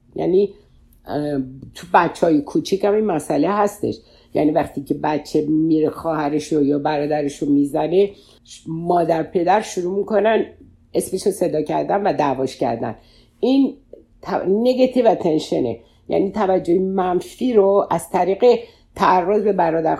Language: Persian